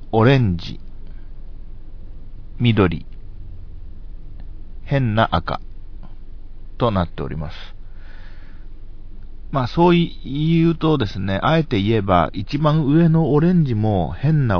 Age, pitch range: 40-59, 95-125 Hz